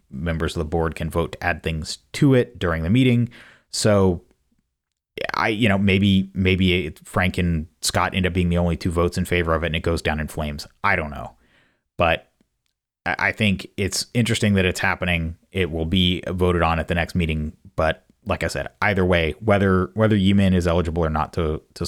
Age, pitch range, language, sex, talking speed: 30-49, 80-95 Hz, English, male, 205 wpm